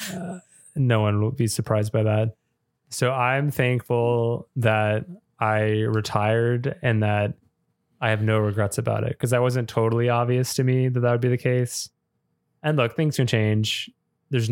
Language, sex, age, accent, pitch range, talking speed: English, male, 20-39, American, 105-120 Hz, 170 wpm